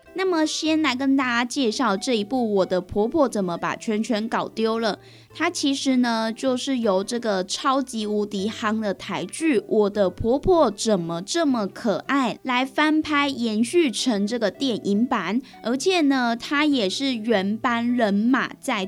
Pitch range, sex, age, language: 205-270 Hz, female, 10-29, Chinese